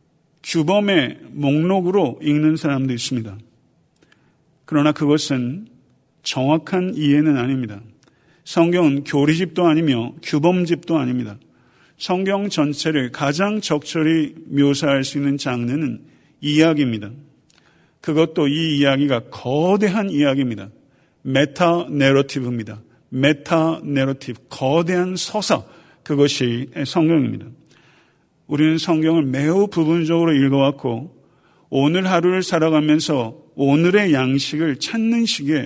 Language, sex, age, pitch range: Korean, male, 50-69, 135-165 Hz